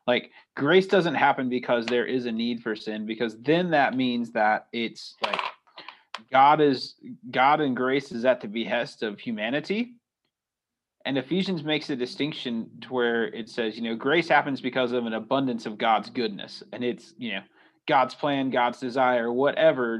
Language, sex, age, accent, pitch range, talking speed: English, male, 30-49, American, 115-135 Hz, 175 wpm